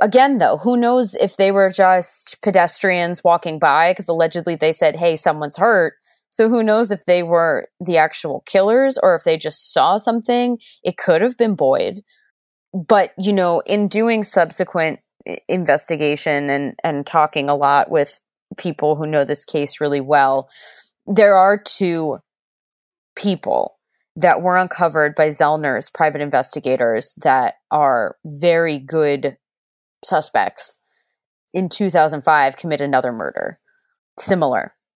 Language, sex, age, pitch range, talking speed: English, female, 20-39, 140-190 Hz, 135 wpm